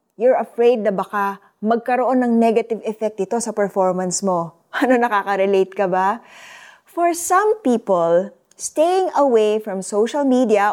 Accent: native